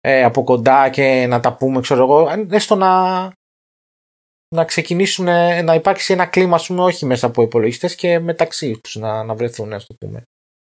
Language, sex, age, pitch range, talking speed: Greek, male, 20-39, 120-170 Hz, 160 wpm